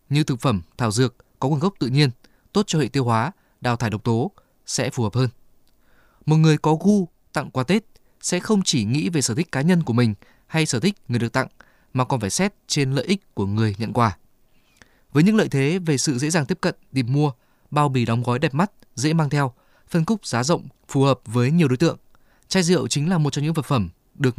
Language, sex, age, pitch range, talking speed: Vietnamese, male, 20-39, 125-160 Hz, 245 wpm